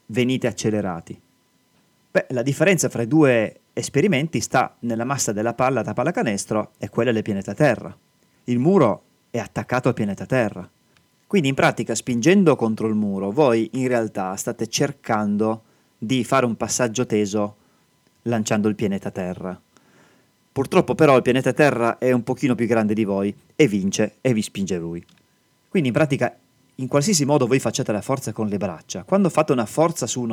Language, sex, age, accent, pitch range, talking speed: Italian, male, 30-49, native, 105-135 Hz, 170 wpm